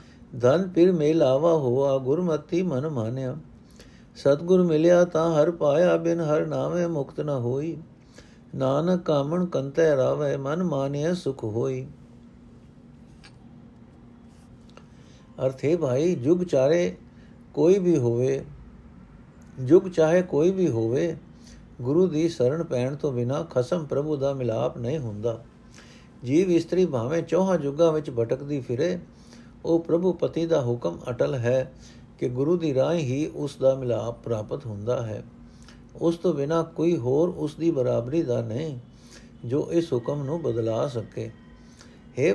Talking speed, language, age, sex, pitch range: 135 wpm, Punjabi, 60-79, male, 130-170 Hz